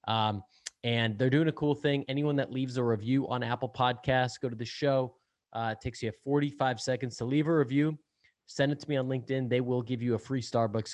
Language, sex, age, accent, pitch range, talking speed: English, male, 20-39, American, 110-130 Hz, 230 wpm